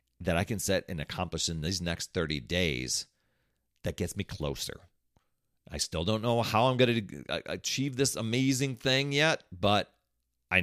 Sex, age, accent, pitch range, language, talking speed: male, 40-59, American, 80-120 Hz, English, 165 wpm